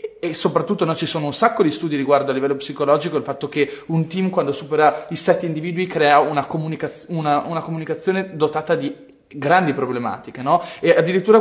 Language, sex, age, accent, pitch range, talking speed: Italian, male, 20-39, native, 145-180 Hz, 190 wpm